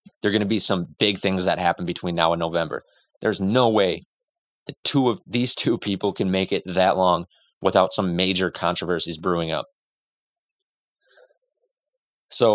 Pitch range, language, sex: 90-110 Hz, English, male